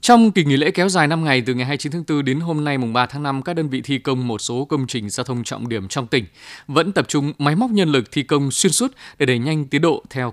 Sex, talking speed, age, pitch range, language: male, 300 wpm, 20-39, 120-150 Hz, Vietnamese